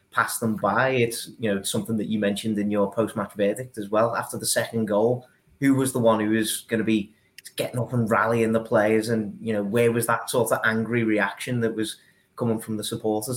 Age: 30-49